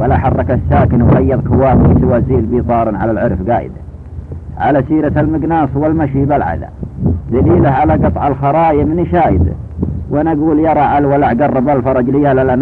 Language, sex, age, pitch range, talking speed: Arabic, male, 50-69, 110-145 Hz, 140 wpm